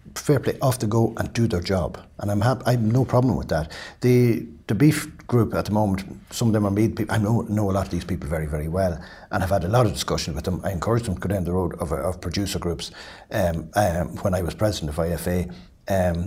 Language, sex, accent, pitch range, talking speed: English, male, Irish, 90-115 Hz, 260 wpm